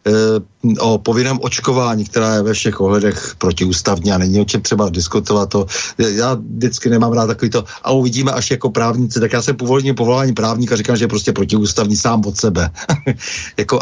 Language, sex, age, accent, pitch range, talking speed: Czech, male, 60-79, native, 110-135 Hz, 180 wpm